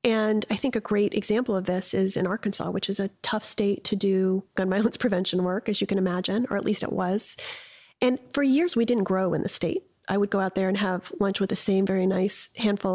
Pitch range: 190-230 Hz